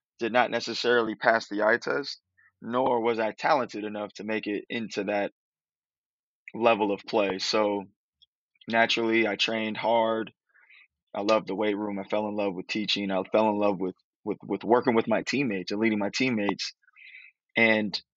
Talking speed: 170 wpm